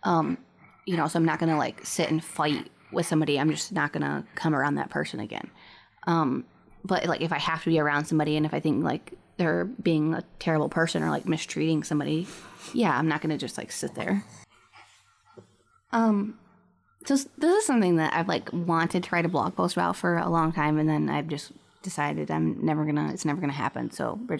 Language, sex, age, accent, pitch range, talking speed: English, female, 20-39, American, 155-180 Hz, 225 wpm